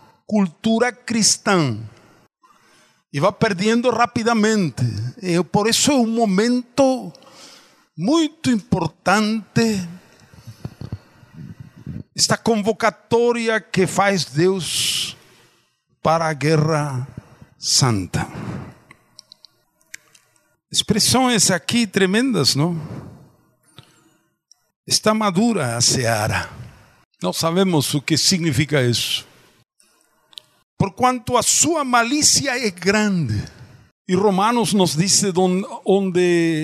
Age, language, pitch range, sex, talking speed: 50-69, Portuguese, 160-240 Hz, male, 75 wpm